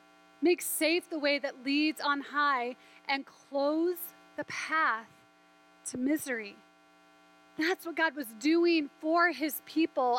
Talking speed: 130 wpm